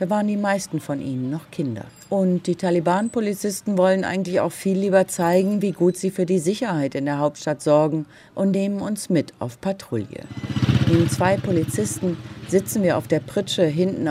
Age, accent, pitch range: 40-59, German, 150-190 Hz